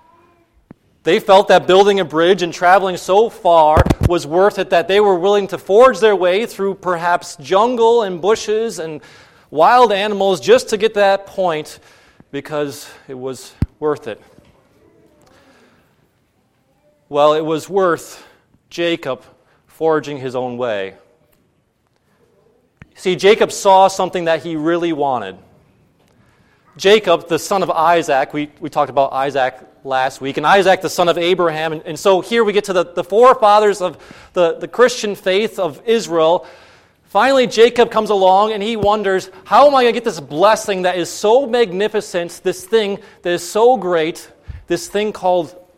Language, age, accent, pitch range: English, 40-59, American, 155-205 Hz